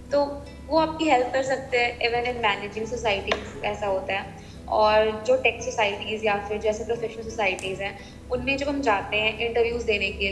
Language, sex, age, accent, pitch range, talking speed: Hindi, female, 20-39, native, 205-245 Hz, 200 wpm